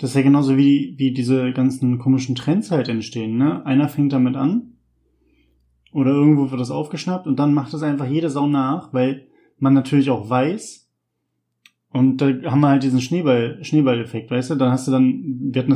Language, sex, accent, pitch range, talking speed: German, male, German, 125-150 Hz, 195 wpm